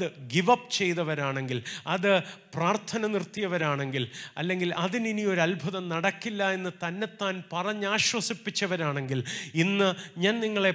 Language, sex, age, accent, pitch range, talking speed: Malayalam, male, 30-49, native, 155-200 Hz, 95 wpm